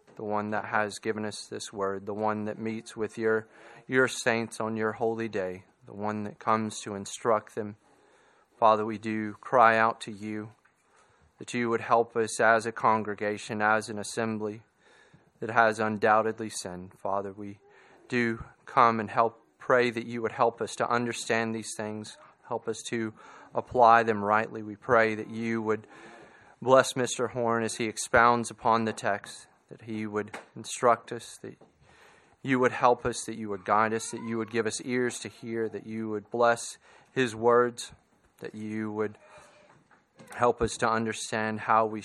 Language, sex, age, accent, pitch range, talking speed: English, male, 30-49, American, 105-115 Hz, 175 wpm